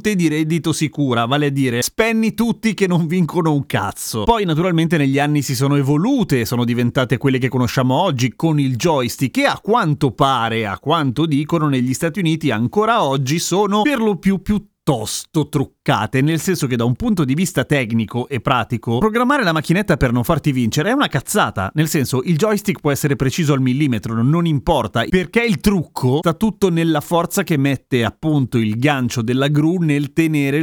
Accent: native